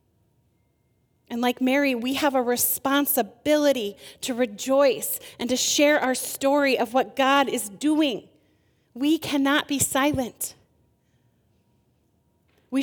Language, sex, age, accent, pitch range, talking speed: English, female, 30-49, American, 250-290 Hz, 110 wpm